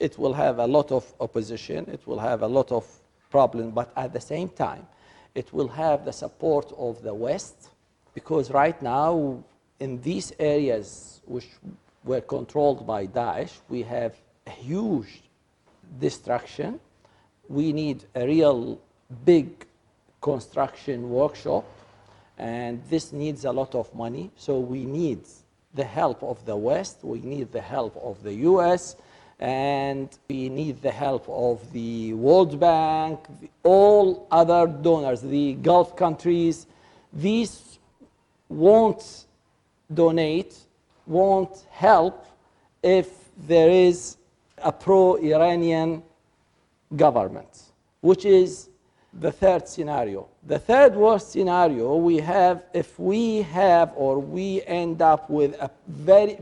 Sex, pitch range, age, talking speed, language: male, 130-180 Hz, 50-69, 130 wpm, German